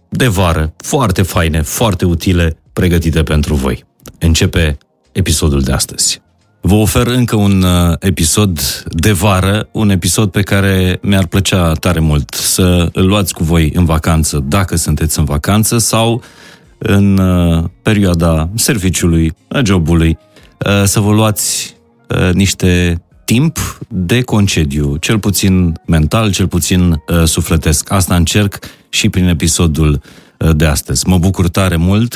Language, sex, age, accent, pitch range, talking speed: Romanian, male, 30-49, native, 80-105 Hz, 130 wpm